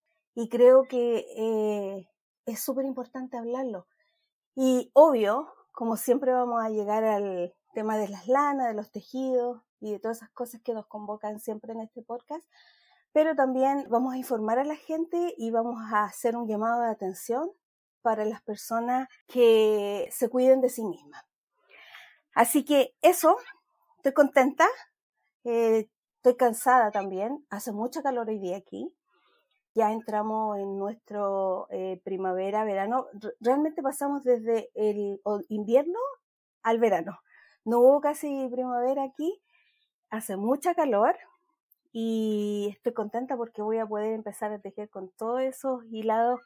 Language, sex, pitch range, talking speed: Spanish, female, 215-270 Hz, 140 wpm